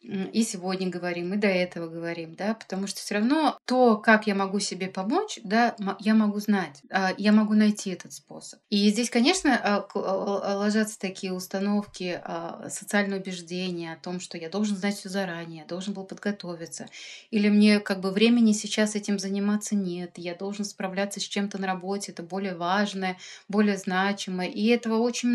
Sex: female